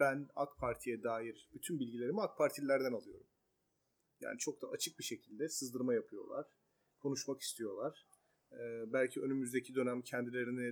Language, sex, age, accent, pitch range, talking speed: Turkish, male, 40-59, native, 125-155 Hz, 135 wpm